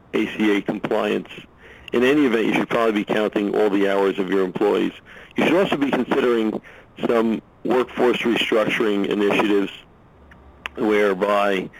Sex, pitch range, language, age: male, 100-110 Hz, English, 50-69